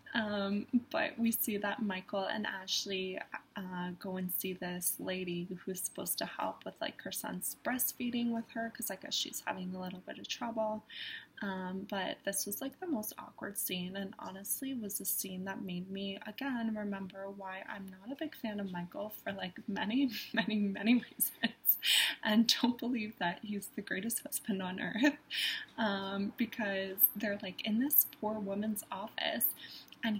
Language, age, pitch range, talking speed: English, 20-39, 190-235 Hz, 175 wpm